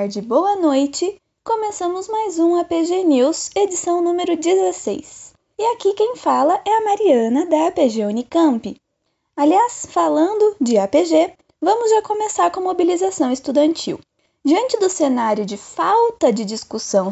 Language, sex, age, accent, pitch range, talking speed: Portuguese, female, 20-39, Brazilian, 245-355 Hz, 135 wpm